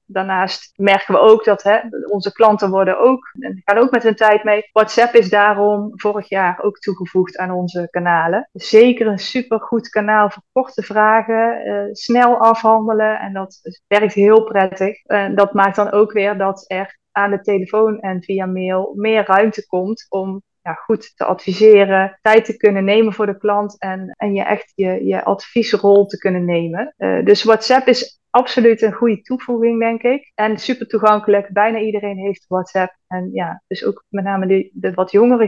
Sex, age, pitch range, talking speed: female, 20-39, 190-220 Hz, 170 wpm